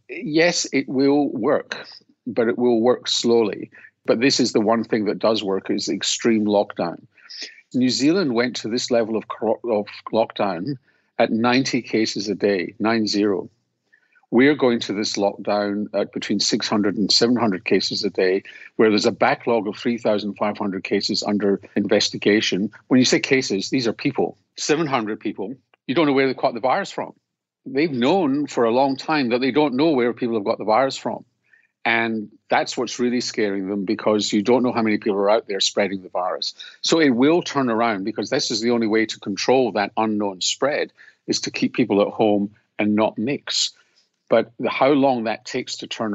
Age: 50-69